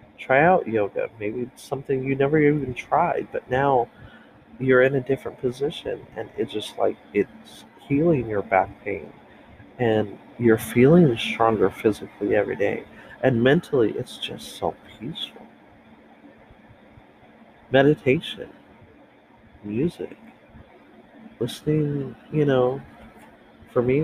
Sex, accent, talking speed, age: male, American, 115 wpm, 40-59